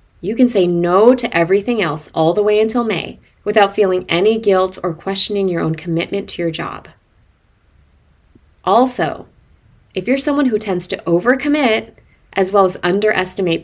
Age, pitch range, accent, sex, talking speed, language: 20-39, 165-220 Hz, American, female, 160 wpm, English